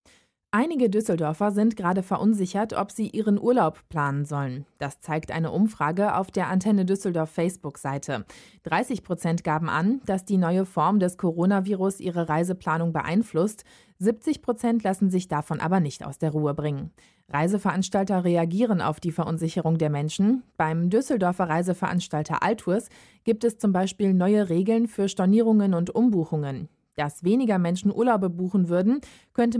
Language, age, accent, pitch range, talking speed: German, 20-39, German, 160-210 Hz, 145 wpm